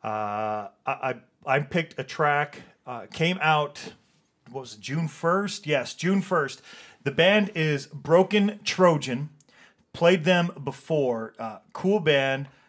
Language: English